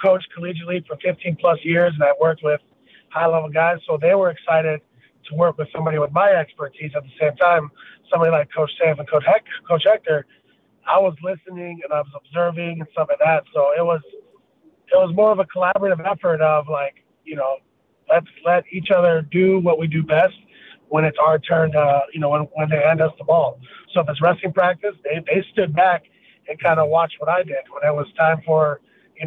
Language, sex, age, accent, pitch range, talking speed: English, male, 30-49, American, 155-195 Hz, 215 wpm